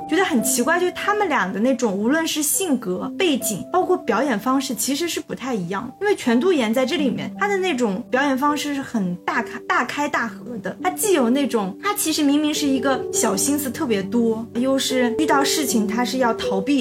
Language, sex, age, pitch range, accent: Chinese, female, 20-39, 230-300 Hz, native